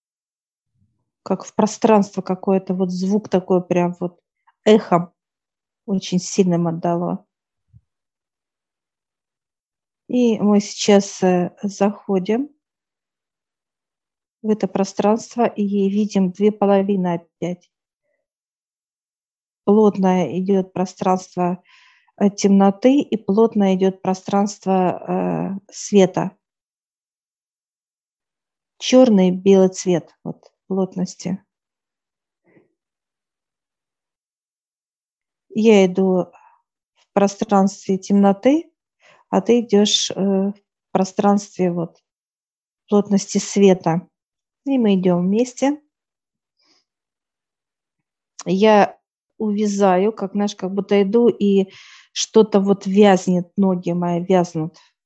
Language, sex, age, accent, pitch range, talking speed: Russian, female, 50-69, native, 180-205 Hz, 75 wpm